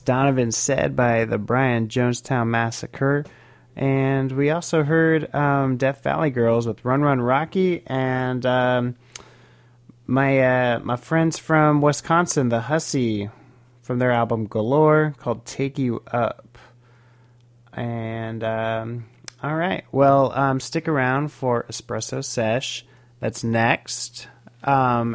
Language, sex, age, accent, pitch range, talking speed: English, male, 30-49, American, 115-135 Hz, 120 wpm